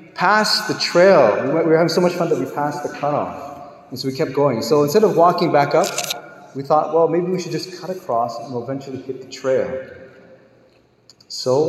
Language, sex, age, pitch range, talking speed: English, male, 30-49, 135-175 Hz, 215 wpm